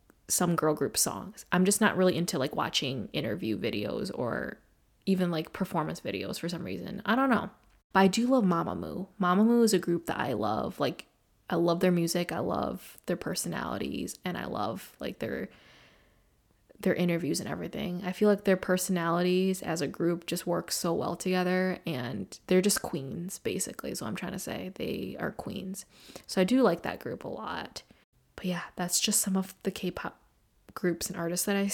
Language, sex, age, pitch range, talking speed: English, female, 20-39, 175-200 Hz, 190 wpm